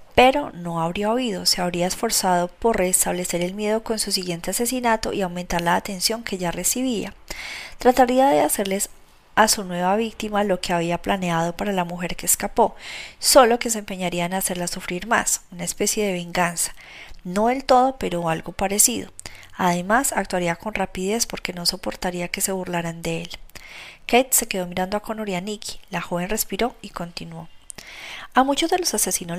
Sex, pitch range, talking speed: female, 175-215 Hz, 180 wpm